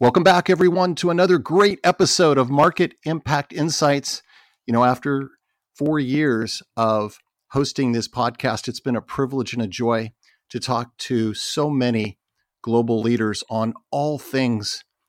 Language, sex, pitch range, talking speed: English, male, 110-135 Hz, 145 wpm